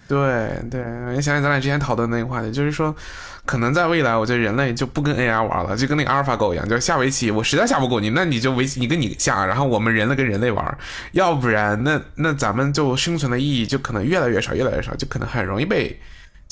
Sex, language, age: male, Chinese, 20-39